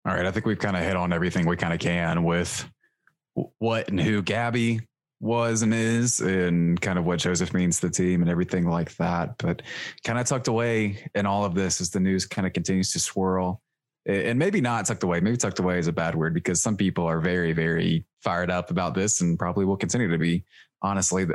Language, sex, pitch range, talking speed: English, male, 90-105 Hz, 230 wpm